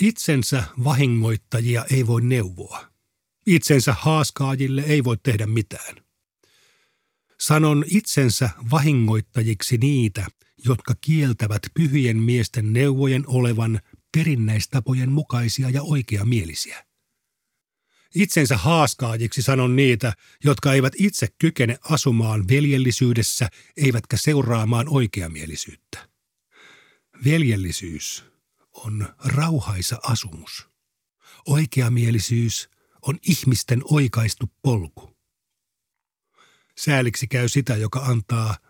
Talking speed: 80 wpm